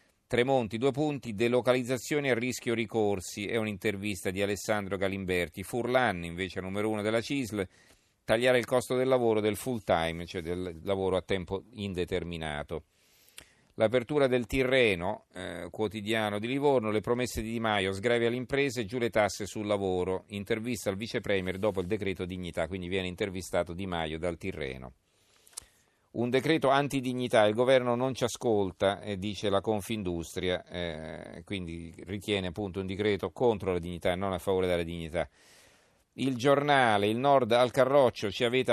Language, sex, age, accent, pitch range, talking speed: Italian, male, 40-59, native, 95-120 Hz, 155 wpm